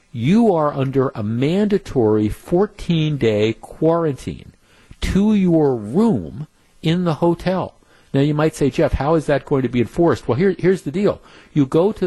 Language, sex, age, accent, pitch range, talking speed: English, male, 50-69, American, 120-160 Hz, 160 wpm